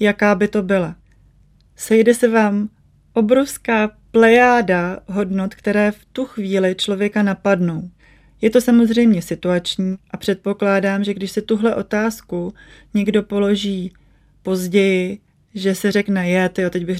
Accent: native